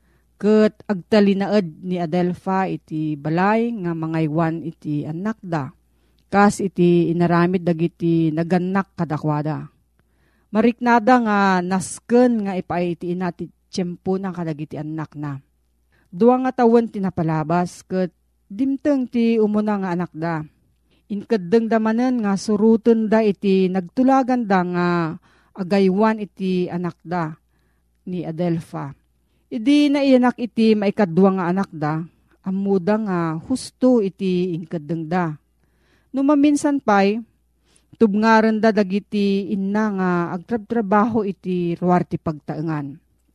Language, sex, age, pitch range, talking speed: Filipino, female, 40-59, 165-215 Hz, 105 wpm